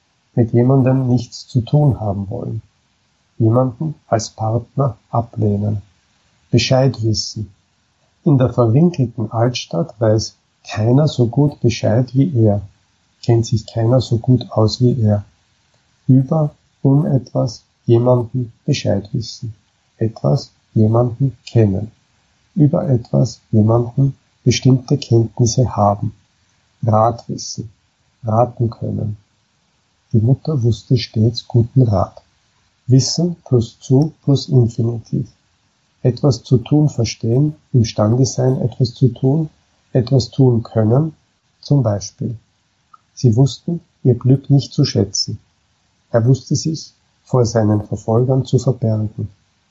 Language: Slovak